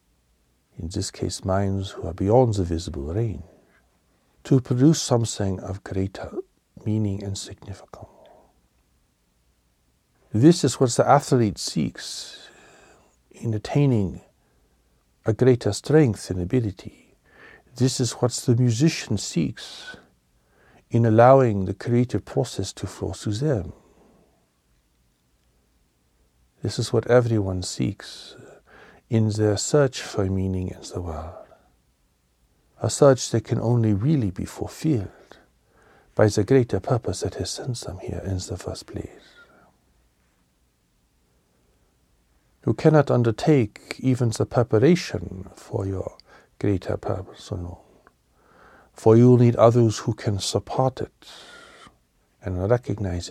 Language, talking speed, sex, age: English, 115 wpm, male, 60-79